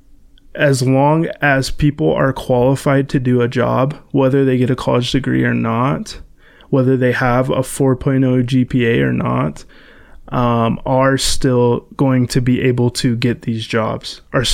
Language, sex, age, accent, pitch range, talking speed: English, male, 20-39, American, 120-140 Hz, 155 wpm